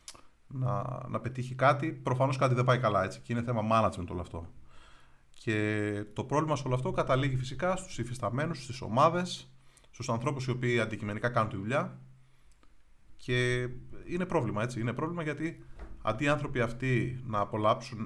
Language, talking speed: Greek, 165 wpm